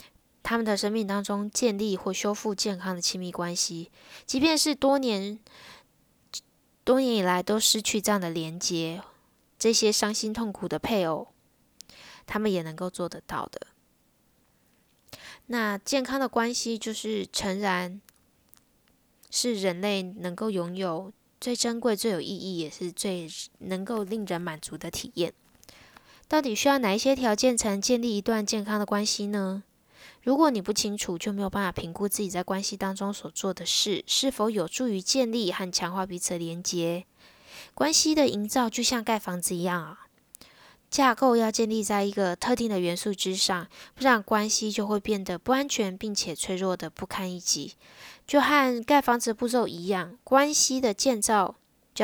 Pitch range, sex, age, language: 185-240 Hz, female, 10-29, Chinese